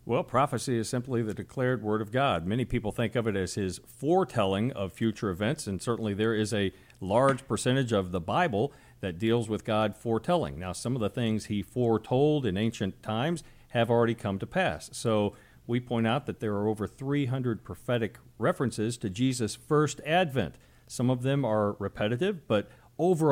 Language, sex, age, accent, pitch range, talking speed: English, male, 50-69, American, 110-140 Hz, 185 wpm